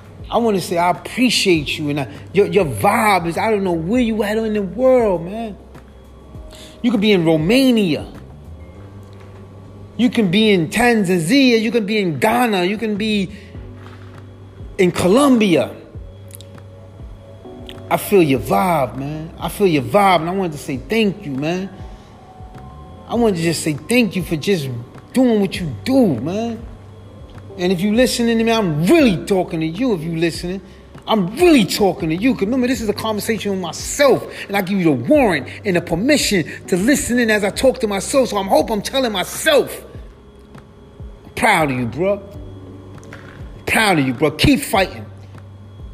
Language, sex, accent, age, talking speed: English, male, American, 30-49, 175 wpm